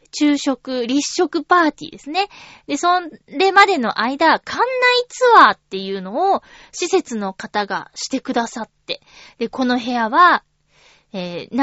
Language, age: Japanese, 20-39